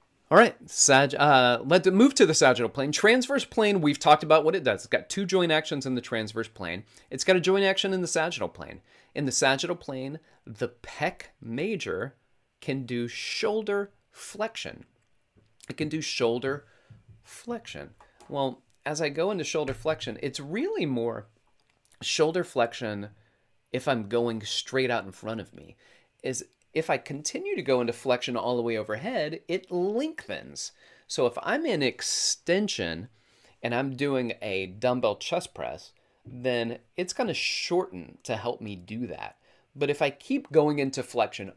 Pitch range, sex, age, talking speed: 110-155 Hz, male, 30-49, 165 wpm